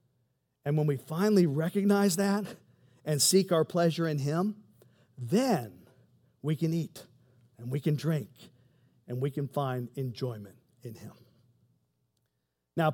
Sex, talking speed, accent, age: male, 130 wpm, American, 50-69